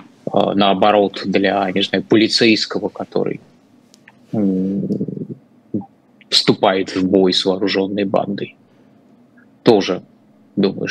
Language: Russian